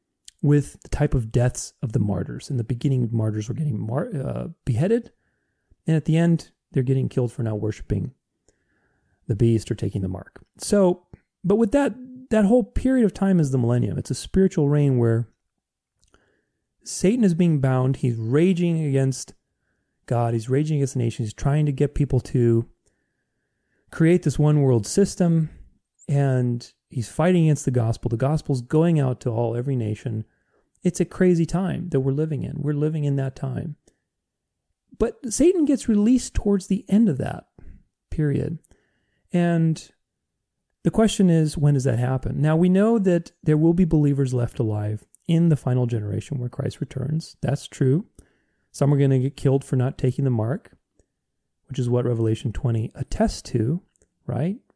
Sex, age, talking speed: male, 30-49, 170 wpm